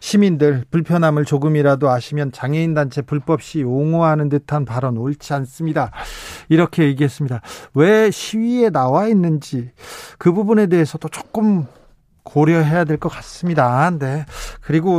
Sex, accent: male, native